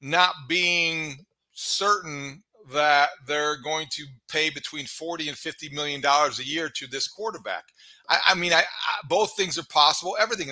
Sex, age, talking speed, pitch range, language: male, 40-59, 160 wpm, 140-180 Hz, English